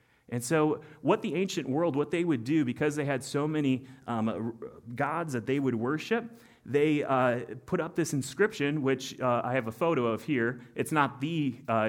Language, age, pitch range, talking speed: English, 30-49, 120-150 Hz, 200 wpm